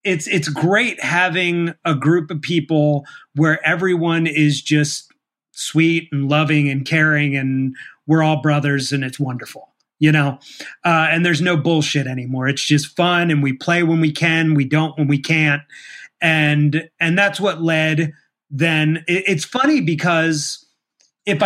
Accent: American